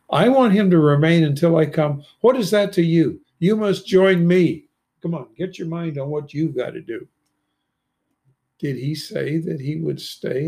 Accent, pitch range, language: American, 125-165 Hz, English